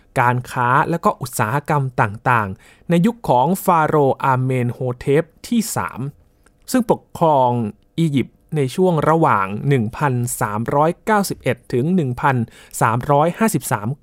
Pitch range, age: 120-170 Hz, 20-39